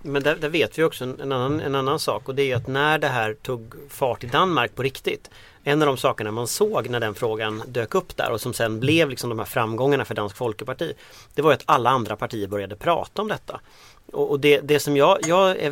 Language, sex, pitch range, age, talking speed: English, male, 115-145 Hz, 30-49, 240 wpm